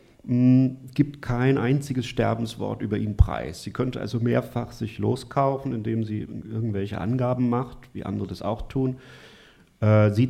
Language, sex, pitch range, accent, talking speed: German, male, 105-130 Hz, German, 140 wpm